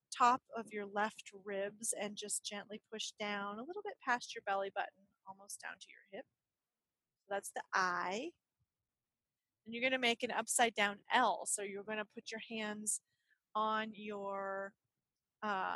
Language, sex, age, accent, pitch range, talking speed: English, female, 30-49, American, 195-225 Hz, 170 wpm